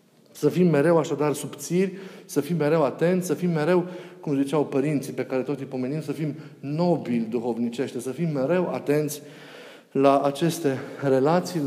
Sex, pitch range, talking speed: male, 135-170 Hz, 160 wpm